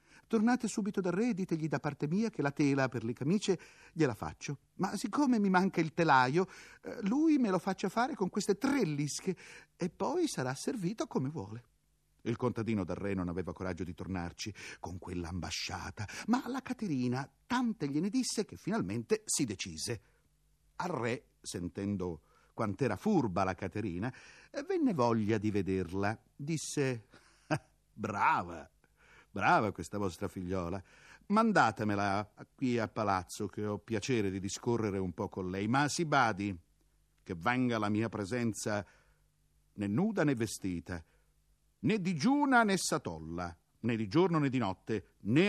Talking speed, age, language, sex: 145 wpm, 50-69, Italian, male